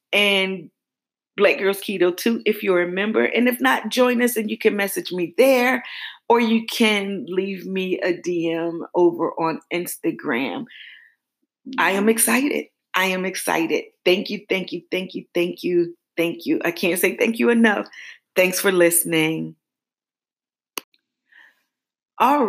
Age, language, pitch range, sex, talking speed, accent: 40-59, English, 170-235 Hz, female, 150 wpm, American